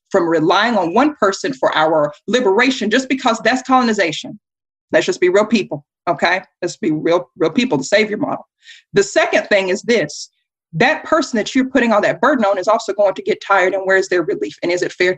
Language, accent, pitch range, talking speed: English, American, 195-260 Hz, 220 wpm